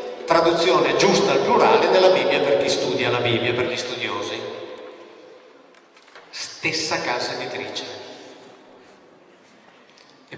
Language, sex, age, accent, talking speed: Italian, male, 40-59, native, 105 wpm